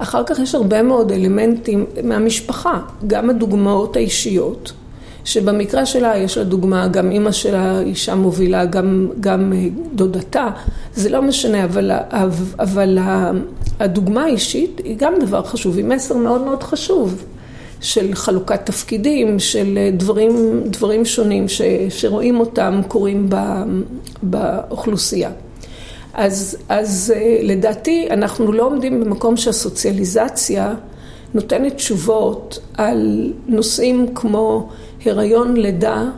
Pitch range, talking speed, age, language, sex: 200-235 Hz, 110 wpm, 40-59, Hebrew, female